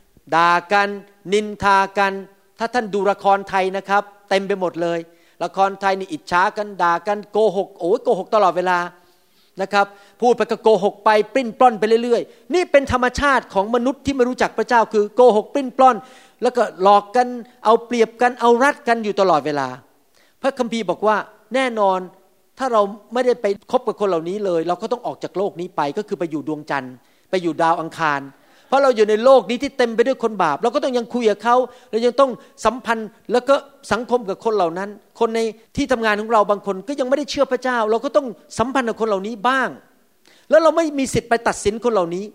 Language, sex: Thai, male